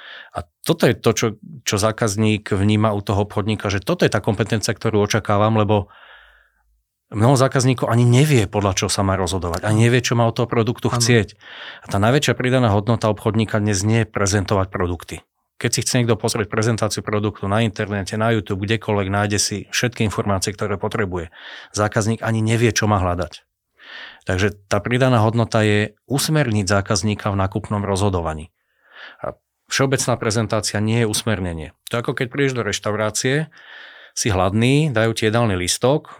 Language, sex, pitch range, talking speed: Slovak, male, 100-120 Hz, 165 wpm